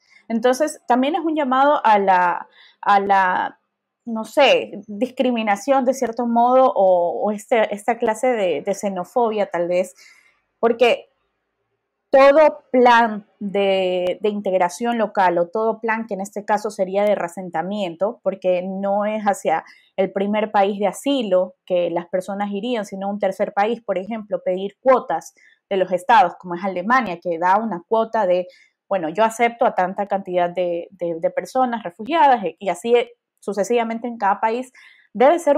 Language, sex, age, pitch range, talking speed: Spanish, female, 20-39, 185-240 Hz, 155 wpm